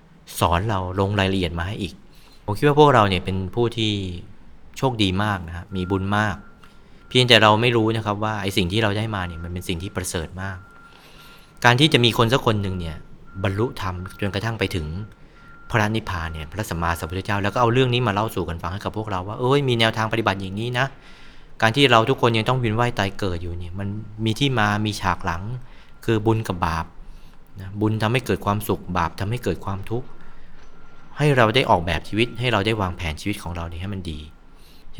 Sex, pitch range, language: male, 90-110 Hz, Thai